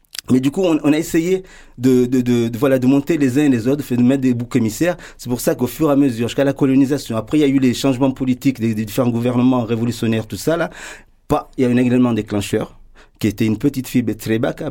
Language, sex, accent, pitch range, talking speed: French, male, French, 110-140 Hz, 260 wpm